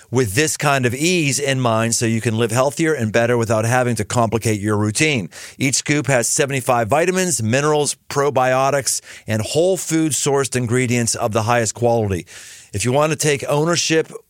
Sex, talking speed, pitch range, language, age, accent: male, 175 wpm, 115-150 Hz, English, 40-59, American